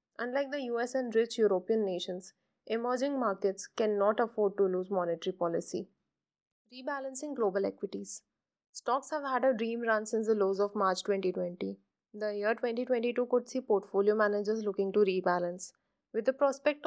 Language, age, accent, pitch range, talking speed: English, 20-39, Indian, 195-240 Hz, 155 wpm